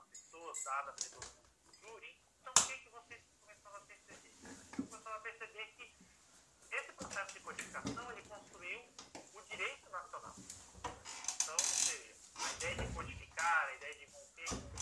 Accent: Brazilian